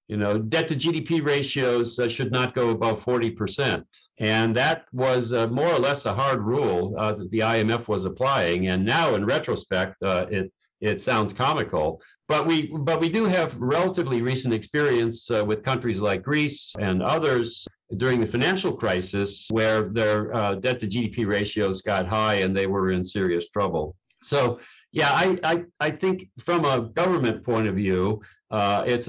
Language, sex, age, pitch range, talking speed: English, male, 60-79, 100-130 Hz, 180 wpm